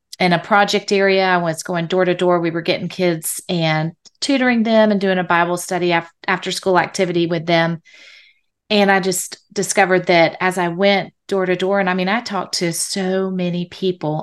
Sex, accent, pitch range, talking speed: female, American, 175-205 Hz, 200 wpm